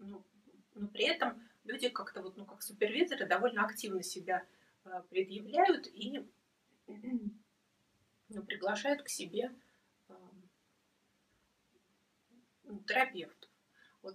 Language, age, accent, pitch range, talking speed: Russian, 30-49, native, 190-230 Hz, 90 wpm